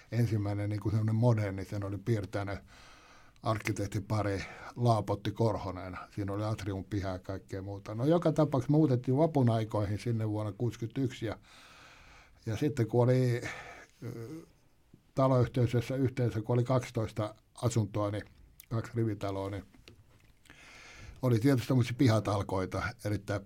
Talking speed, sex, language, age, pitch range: 115 wpm, male, Finnish, 60-79, 105-130 Hz